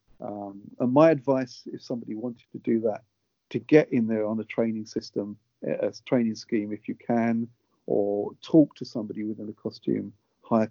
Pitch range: 110-130 Hz